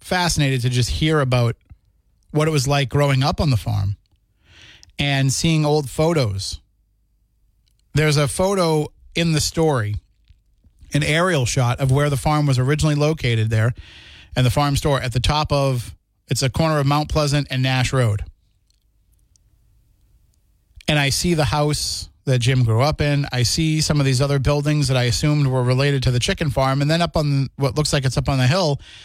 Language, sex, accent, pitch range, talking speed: English, male, American, 105-150 Hz, 185 wpm